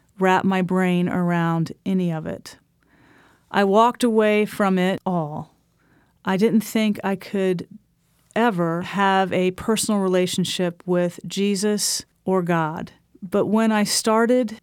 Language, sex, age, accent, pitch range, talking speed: English, female, 40-59, American, 180-215 Hz, 125 wpm